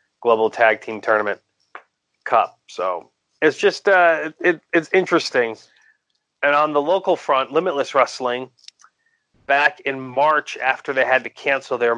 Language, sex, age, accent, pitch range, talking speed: English, male, 30-49, American, 110-135 Hz, 135 wpm